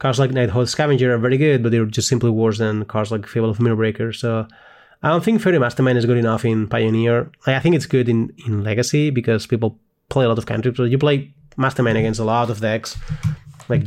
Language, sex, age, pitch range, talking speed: English, male, 20-39, 115-140 Hz, 235 wpm